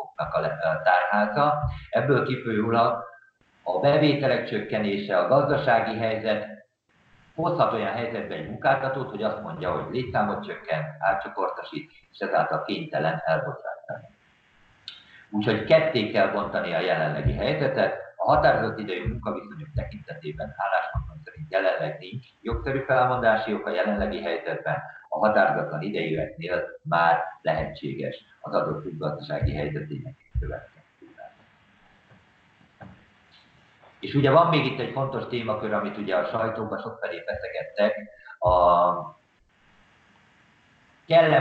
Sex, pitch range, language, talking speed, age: male, 105-135 Hz, Hungarian, 105 wpm, 50-69